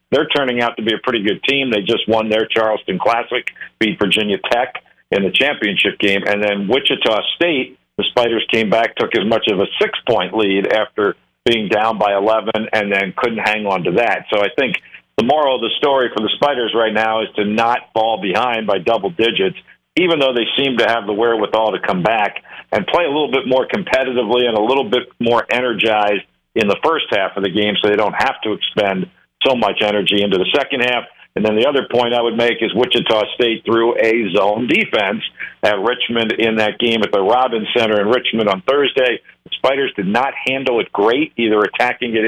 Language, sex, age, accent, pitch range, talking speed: English, male, 50-69, American, 105-120 Hz, 215 wpm